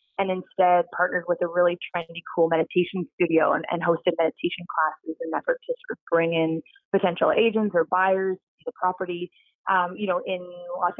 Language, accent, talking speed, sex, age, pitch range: English, American, 190 wpm, female, 30-49, 170-205 Hz